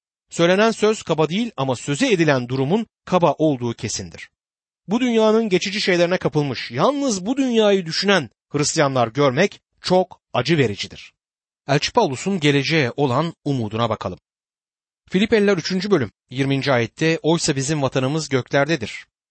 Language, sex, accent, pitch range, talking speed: Turkish, male, native, 130-195 Hz, 125 wpm